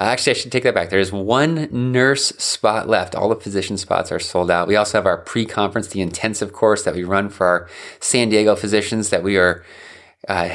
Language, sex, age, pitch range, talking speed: English, male, 20-39, 95-120 Hz, 220 wpm